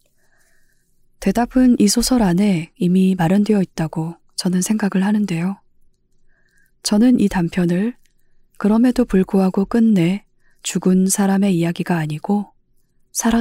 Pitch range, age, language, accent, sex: 175-210 Hz, 20-39, Korean, native, female